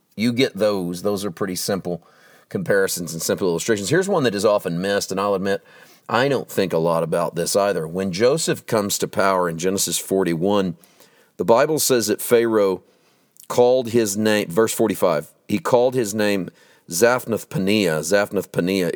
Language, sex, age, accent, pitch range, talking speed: English, male, 40-59, American, 95-120 Hz, 165 wpm